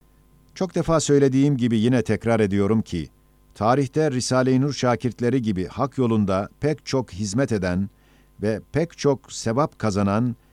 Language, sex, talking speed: Turkish, male, 135 wpm